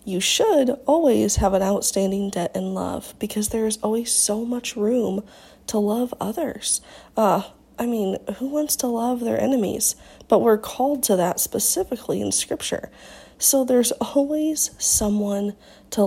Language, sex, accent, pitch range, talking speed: English, female, American, 210-260 Hz, 150 wpm